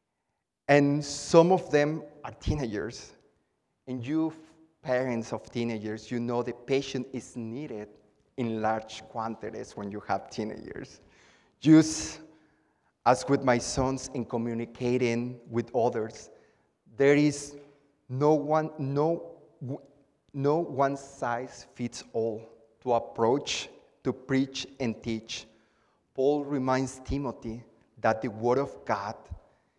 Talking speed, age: 115 wpm, 30-49